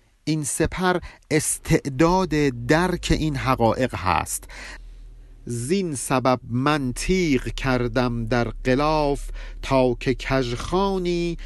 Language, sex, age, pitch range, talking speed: Persian, male, 50-69, 110-150 Hz, 85 wpm